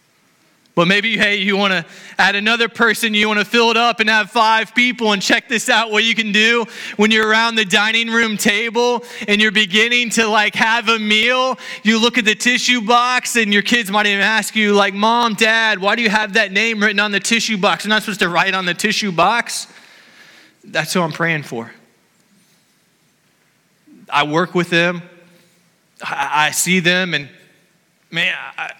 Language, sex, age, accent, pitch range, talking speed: English, male, 20-39, American, 180-235 Hz, 195 wpm